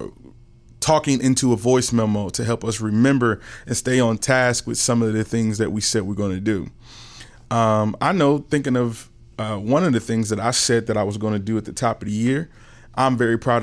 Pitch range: 110-130 Hz